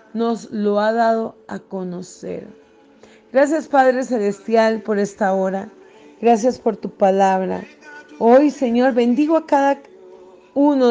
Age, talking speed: 30-49, 120 wpm